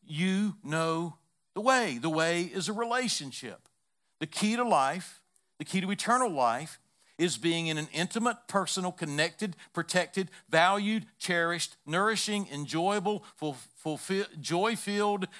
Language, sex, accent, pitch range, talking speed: English, male, American, 125-185 Hz, 120 wpm